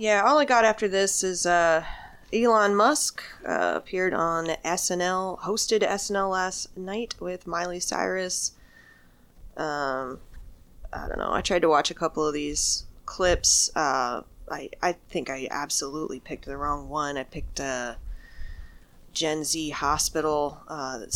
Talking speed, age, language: 155 wpm, 20-39, English